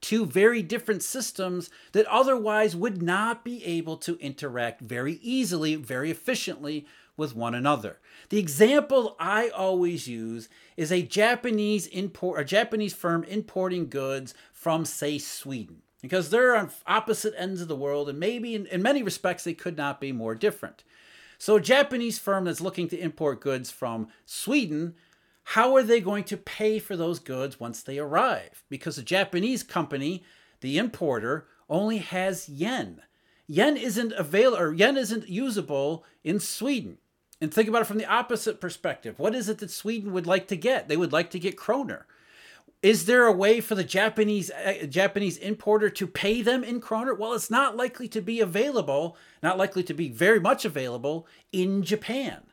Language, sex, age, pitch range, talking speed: English, male, 40-59, 160-220 Hz, 170 wpm